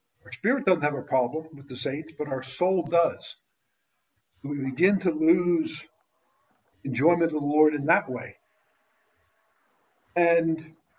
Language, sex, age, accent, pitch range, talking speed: English, male, 50-69, American, 140-175 Hz, 135 wpm